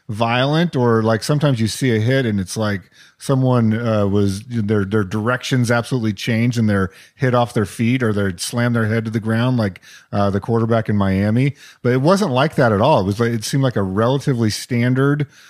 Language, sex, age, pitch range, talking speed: English, male, 40-59, 110-135 Hz, 215 wpm